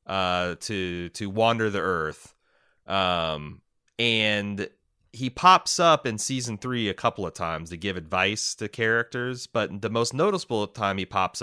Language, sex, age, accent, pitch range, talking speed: English, male, 30-49, American, 95-125 Hz, 160 wpm